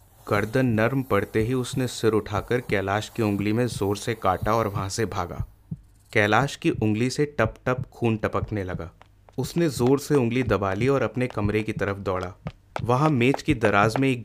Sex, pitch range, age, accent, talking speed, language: male, 100-130 Hz, 30-49, native, 190 wpm, Hindi